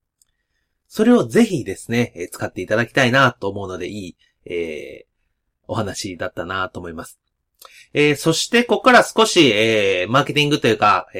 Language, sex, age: Japanese, male, 30-49